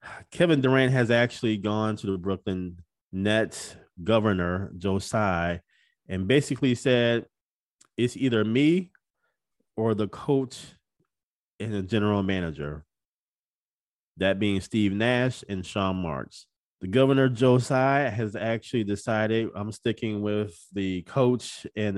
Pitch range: 100-125 Hz